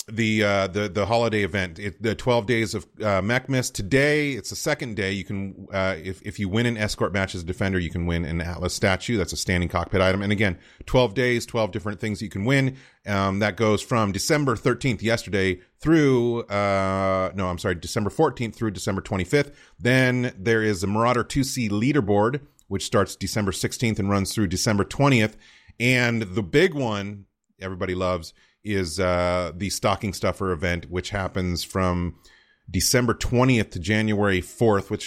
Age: 30-49